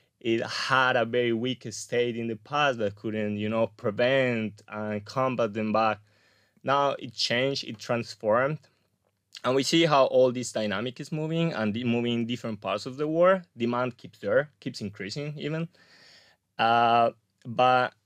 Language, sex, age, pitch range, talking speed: Hebrew, male, 20-39, 105-125 Hz, 160 wpm